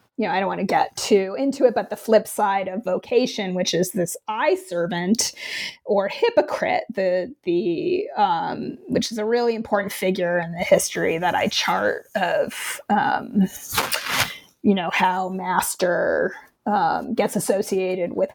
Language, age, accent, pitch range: English, 30-49, American, 195-260 Hz